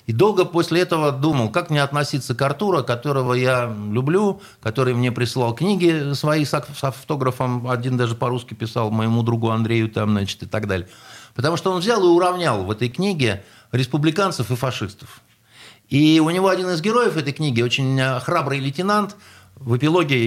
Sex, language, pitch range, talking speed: male, Russian, 110-150 Hz, 165 wpm